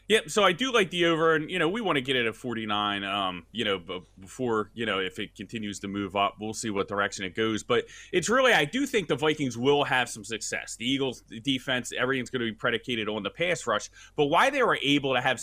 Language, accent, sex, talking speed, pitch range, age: English, American, male, 260 wpm, 115-155 Hz, 30-49